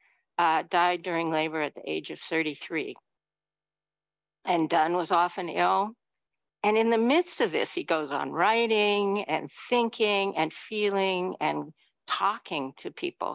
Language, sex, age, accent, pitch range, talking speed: English, female, 50-69, American, 160-210 Hz, 145 wpm